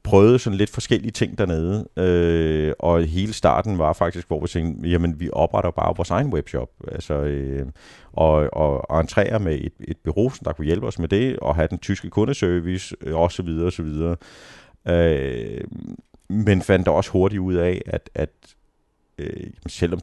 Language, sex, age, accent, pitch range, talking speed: Danish, male, 30-49, native, 80-95 Hz, 175 wpm